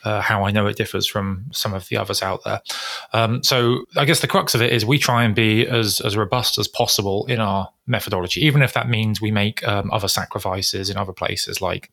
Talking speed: 235 wpm